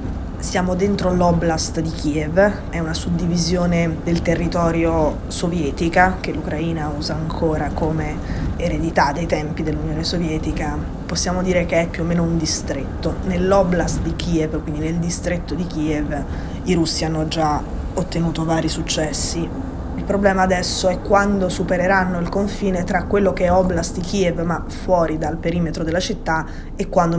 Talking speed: 150 wpm